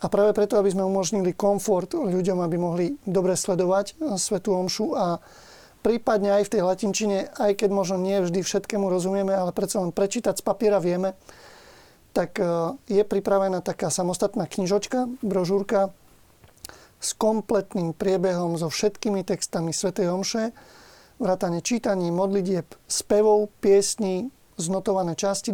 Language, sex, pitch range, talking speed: Slovak, male, 185-210 Hz, 130 wpm